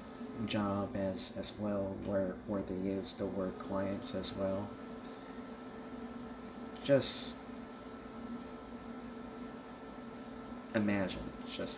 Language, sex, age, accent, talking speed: English, male, 50-69, American, 80 wpm